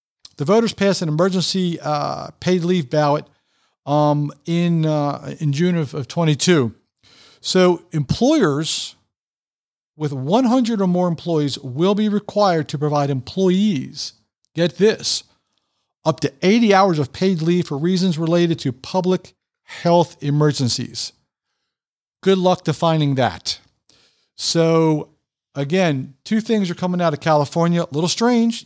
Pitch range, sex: 140-180 Hz, male